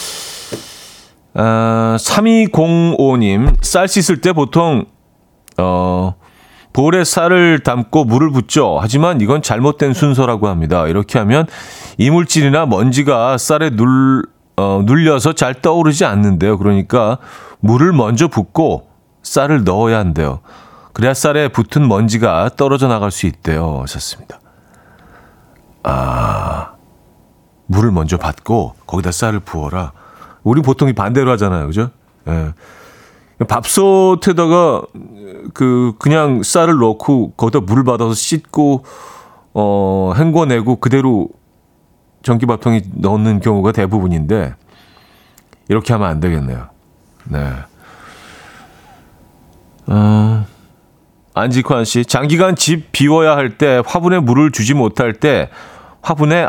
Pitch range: 105-150 Hz